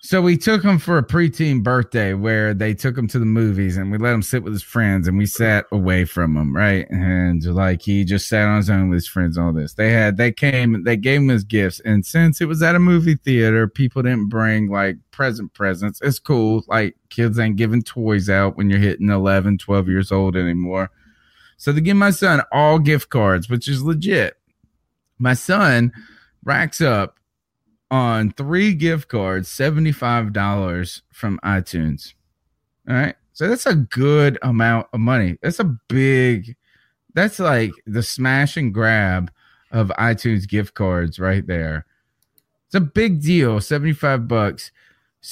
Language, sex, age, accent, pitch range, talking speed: English, male, 30-49, American, 100-140 Hz, 175 wpm